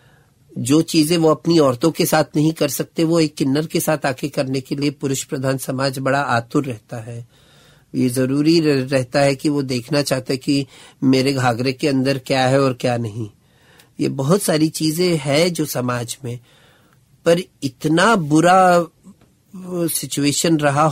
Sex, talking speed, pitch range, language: male, 165 wpm, 130-160 Hz, Hindi